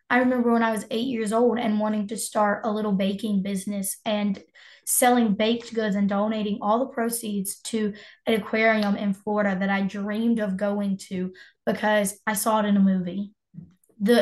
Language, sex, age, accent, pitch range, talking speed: English, female, 10-29, American, 205-245 Hz, 185 wpm